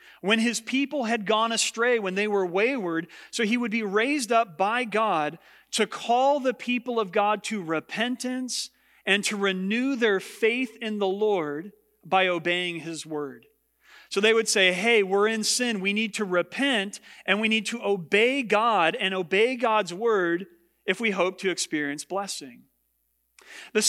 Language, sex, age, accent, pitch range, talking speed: English, male, 40-59, American, 175-225 Hz, 170 wpm